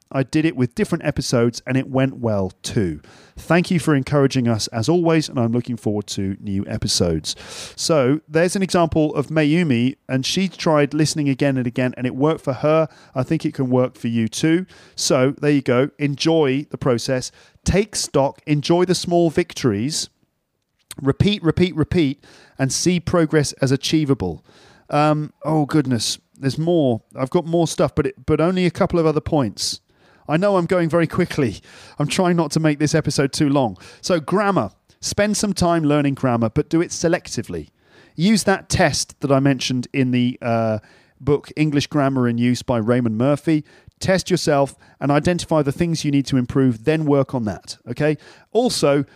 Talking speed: 180 wpm